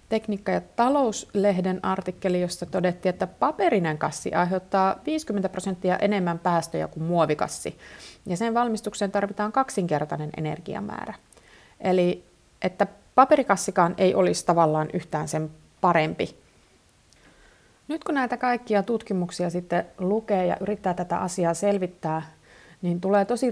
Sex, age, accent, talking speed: female, 30-49, native, 115 wpm